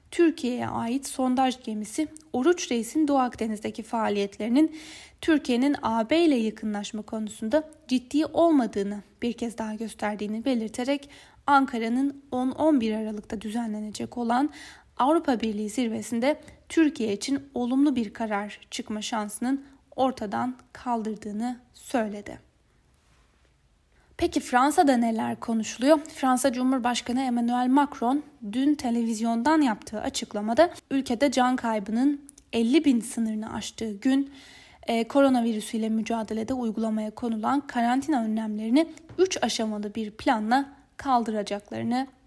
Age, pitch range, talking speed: 10-29, 225-280 Hz, 100 wpm